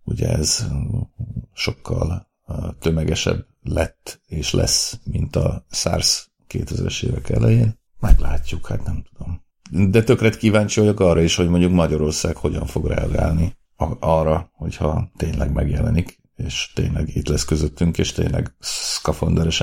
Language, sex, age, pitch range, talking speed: Hungarian, male, 50-69, 80-100 Hz, 125 wpm